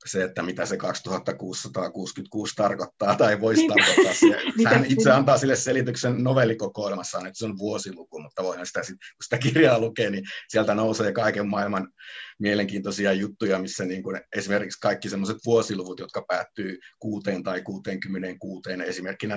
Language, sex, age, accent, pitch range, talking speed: Finnish, male, 50-69, native, 95-110 Hz, 145 wpm